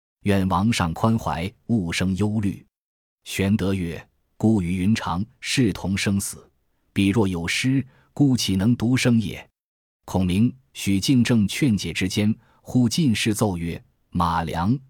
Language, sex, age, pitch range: Chinese, male, 20-39, 90-115 Hz